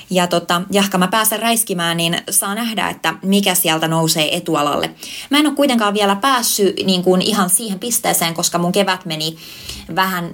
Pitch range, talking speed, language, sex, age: 165-200 Hz, 175 wpm, Finnish, female, 20-39